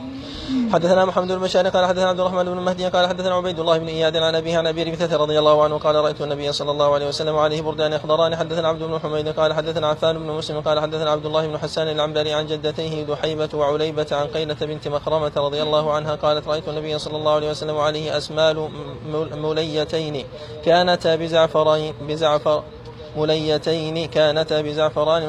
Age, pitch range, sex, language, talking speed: 20-39, 150-165 Hz, male, Arabic, 180 wpm